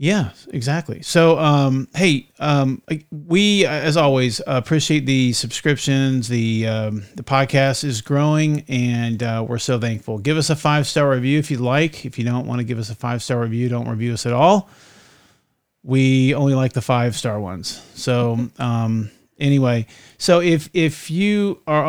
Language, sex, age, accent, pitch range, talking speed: English, male, 40-59, American, 120-150 Hz, 165 wpm